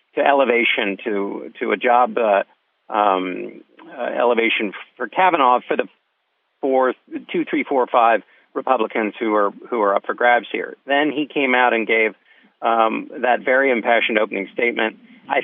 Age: 50-69